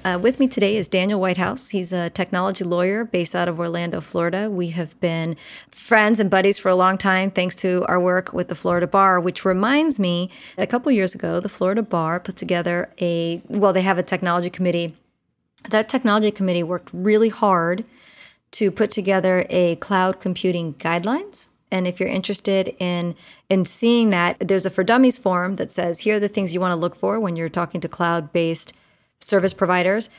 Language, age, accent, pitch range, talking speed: English, 30-49, American, 175-200 Hz, 195 wpm